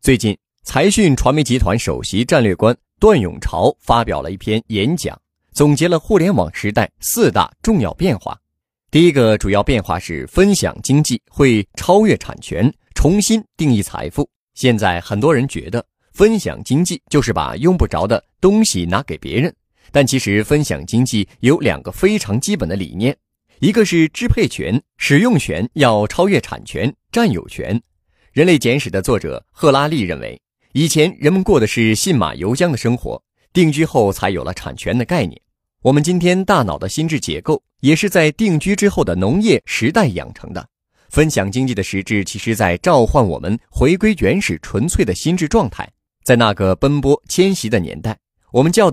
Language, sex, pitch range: Chinese, male, 105-160 Hz